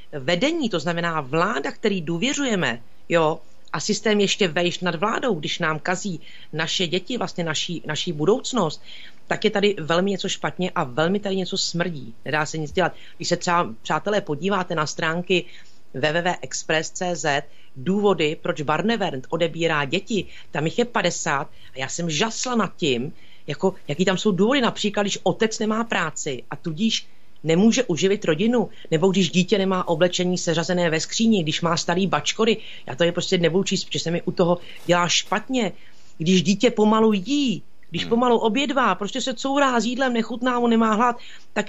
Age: 40-59